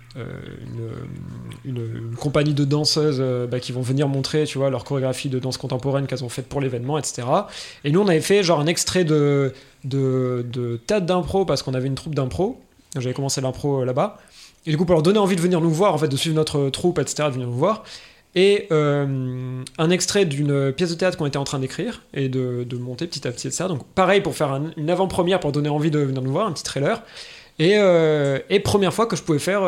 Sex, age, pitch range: male, 20-39, 135-180 Hz